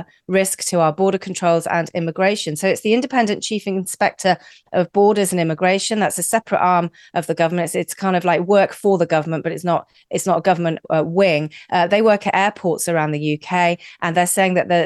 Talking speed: 220 wpm